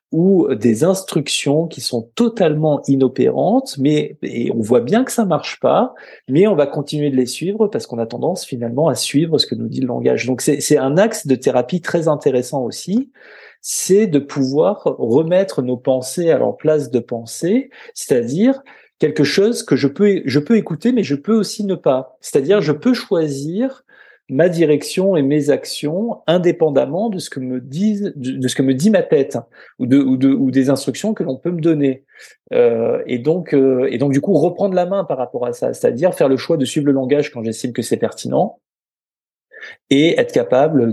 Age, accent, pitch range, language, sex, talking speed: 40-59, French, 130-190 Hz, French, male, 205 wpm